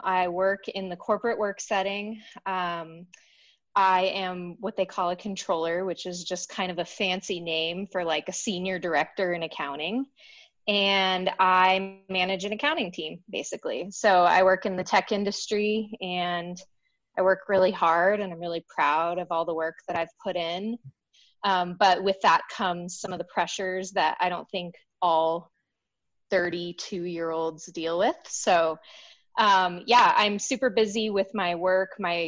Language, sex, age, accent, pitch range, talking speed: English, female, 20-39, American, 175-200 Hz, 165 wpm